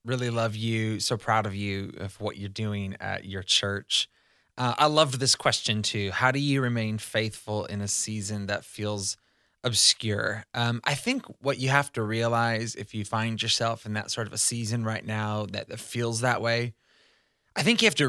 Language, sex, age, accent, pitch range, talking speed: English, male, 20-39, American, 110-125 Hz, 200 wpm